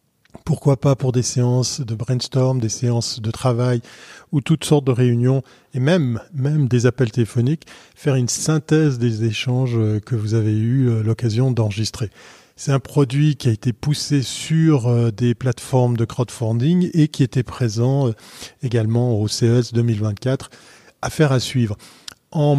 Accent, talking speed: French, 150 wpm